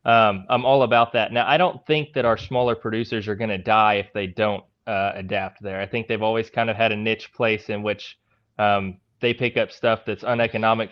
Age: 20-39